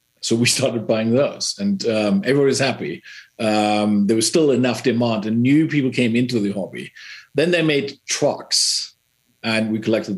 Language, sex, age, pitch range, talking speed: English, male, 50-69, 115-145 Hz, 170 wpm